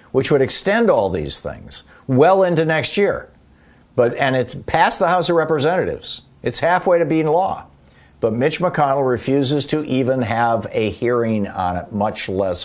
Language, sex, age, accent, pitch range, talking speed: English, male, 50-69, American, 105-140 Hz, 170 wpm